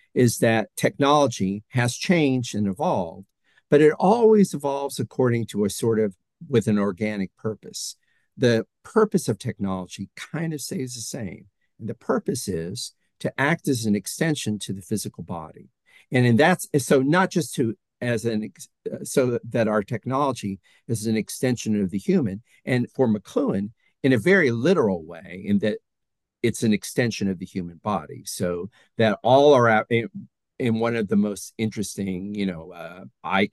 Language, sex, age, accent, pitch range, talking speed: English, male, 50-69, American, 100-130 Hz, 165 wpm